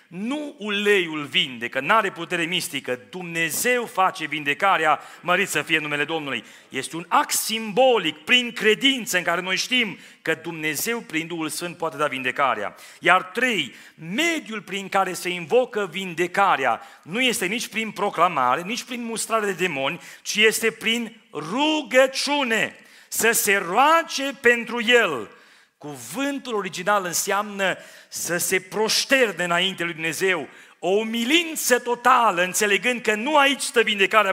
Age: 40-59